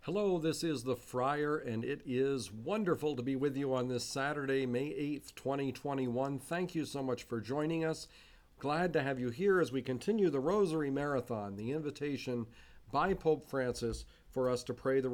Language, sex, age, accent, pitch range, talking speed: English, male, 50-69, American, 115-150 Hz, 185 wpm